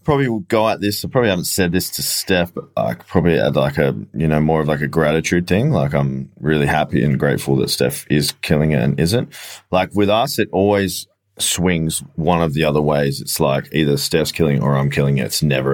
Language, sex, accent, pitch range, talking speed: English, male, Australian, 75-90 Hz, 240 wpm